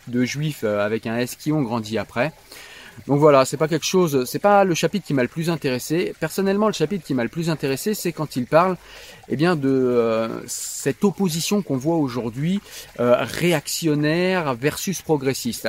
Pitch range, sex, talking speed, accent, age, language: 120-160 Hz, male, 175 wpm, French, 30-49, French